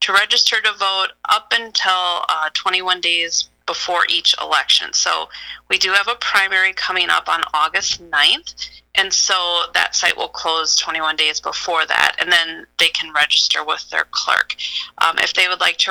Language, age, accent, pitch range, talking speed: English, 30-49, American, 165-195 Hz, 175 wpm